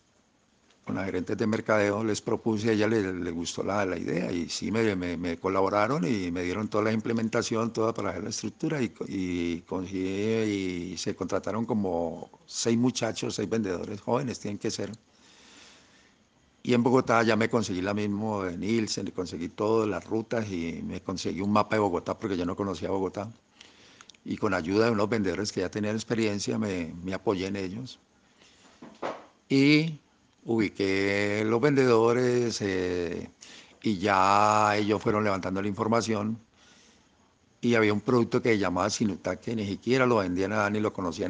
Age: 50-69